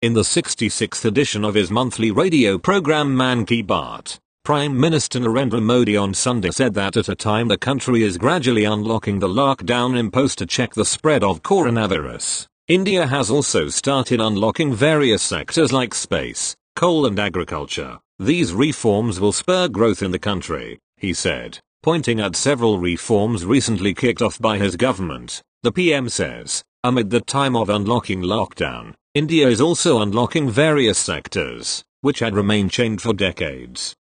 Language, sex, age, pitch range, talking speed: English, male, 40-59, 105-135 Hz, 155 wpm